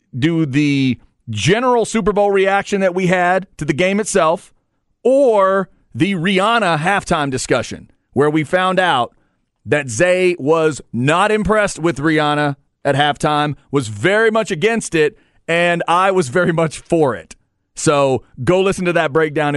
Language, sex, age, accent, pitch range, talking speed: English, male, 40-59, American, 135-185 Hz, 150 wpm